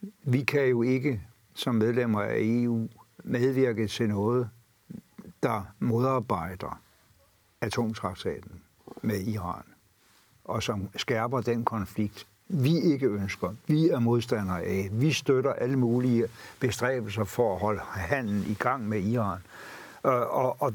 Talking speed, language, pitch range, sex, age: 125 wpm, Danish, 105-125 Hz, male, 60-79